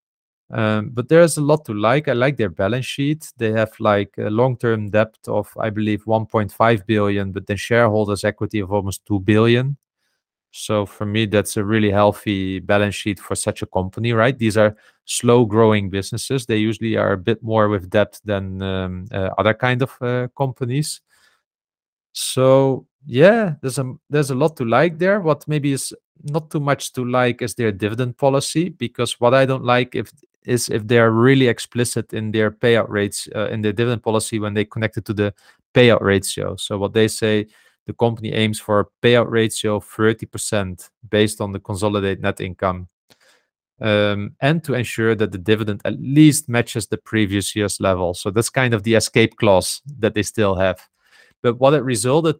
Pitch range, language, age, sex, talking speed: 105-125 Hz, English, 30-49, male, 190 wpm